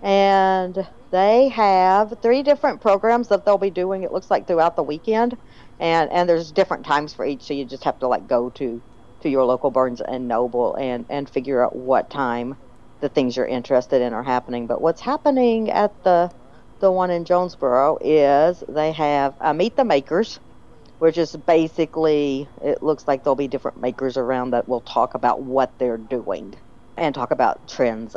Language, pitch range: English, 130-180 Hz